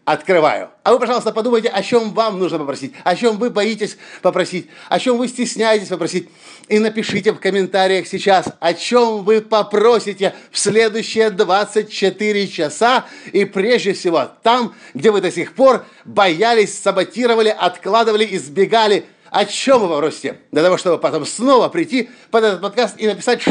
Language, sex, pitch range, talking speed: Russian, male, 180-235 Hz, 155 wpm